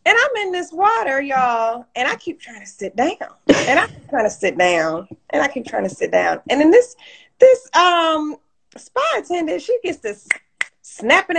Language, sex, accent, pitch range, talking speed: English, female, American, 240-350 Hz, 195 wpm